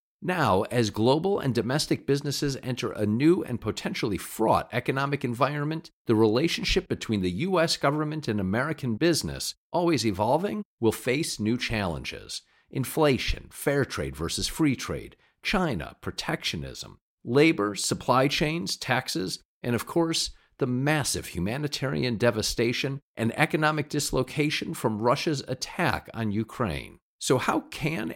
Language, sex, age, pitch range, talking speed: English, male, 50-69, 115-155 Hz, 125 wpm